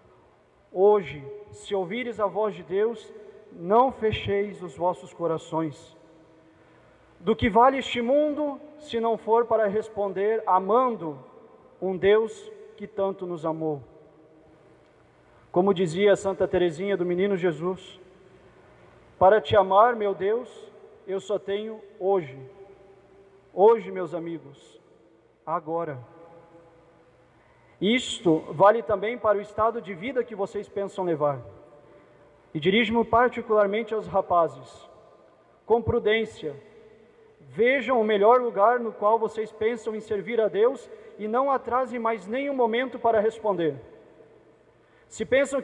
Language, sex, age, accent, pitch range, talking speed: Portuguese, male, 40-59, Brazilian, 180-225 Hz, 120 wpm